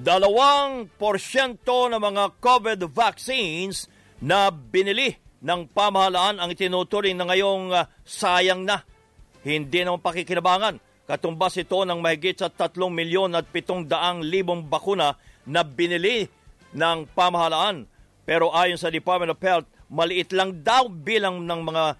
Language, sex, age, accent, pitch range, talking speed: English, male, 50-69, Filipino, 160-185 Hz, 115 wpm